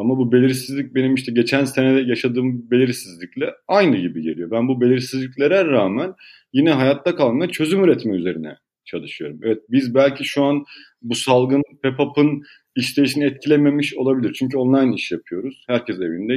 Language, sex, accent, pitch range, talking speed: Turkish, male, native, 120-150 Hz, 145 wpm